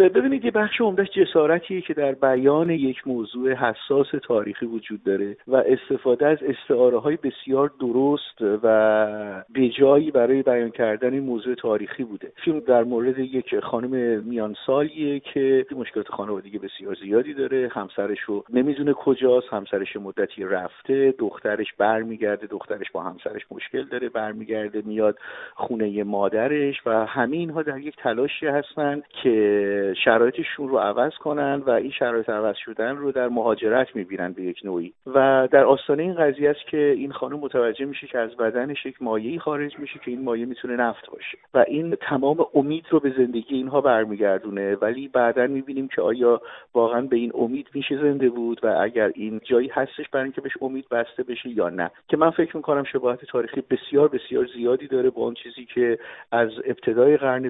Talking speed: 165 wpm